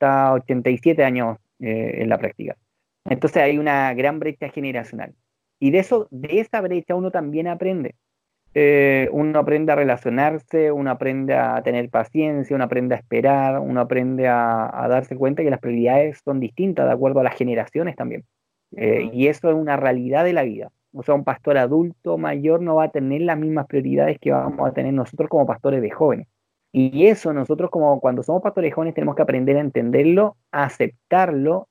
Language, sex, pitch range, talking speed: Spanish, male, 130-155 Hz, 185 wpm